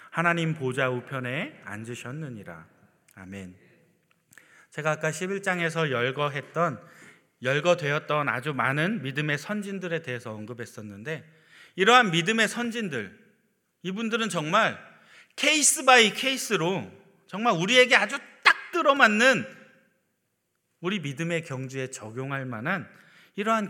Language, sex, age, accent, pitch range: Korean, male, 30-49, native, 130-190 Hz